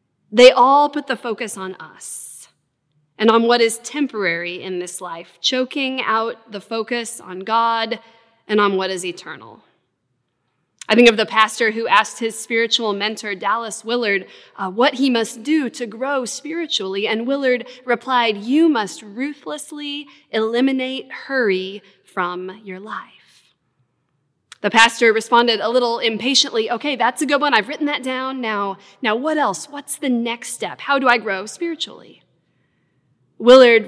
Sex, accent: female, American